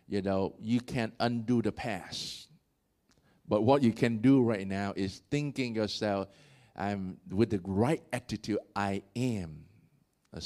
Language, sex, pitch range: English, male, 95-130 Hz